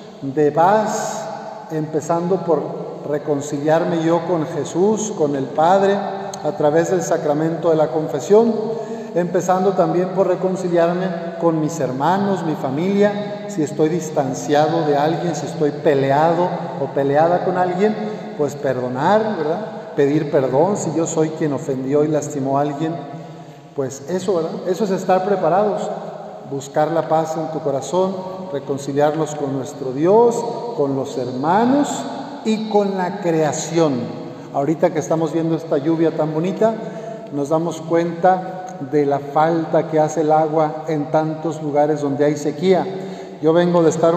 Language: Spanish